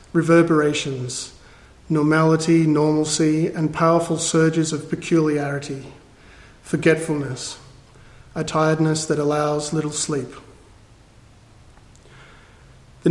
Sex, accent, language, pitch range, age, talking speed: male, Australian, English, 145-170 Hz, 40-59, 75 wpm